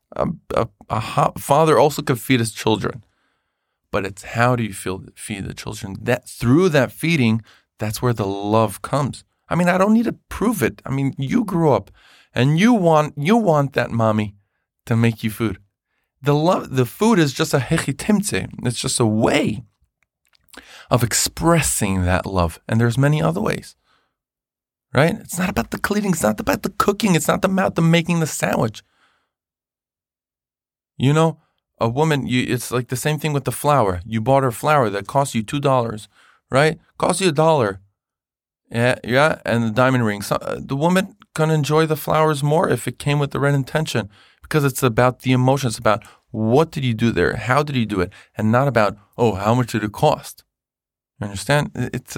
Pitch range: 110-155 Hz